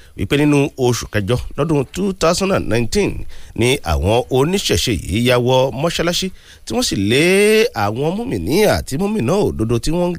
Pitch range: 95-145 Hz